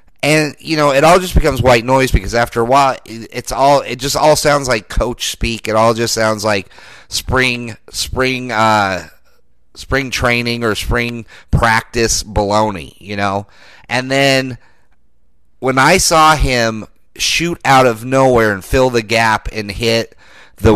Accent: American